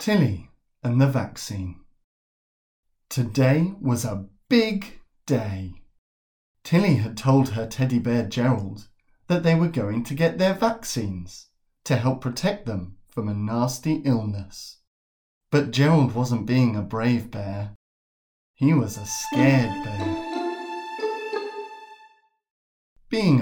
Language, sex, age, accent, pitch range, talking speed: English, male, 30-49, British, 105-150 Hz, 115 wpm